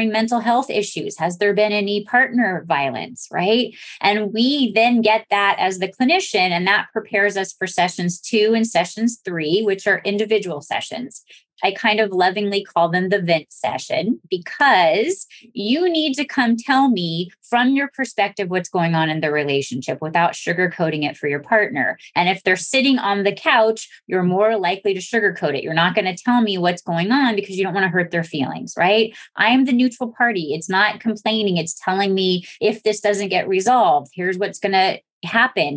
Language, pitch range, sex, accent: English, 175-225 Hz, female, American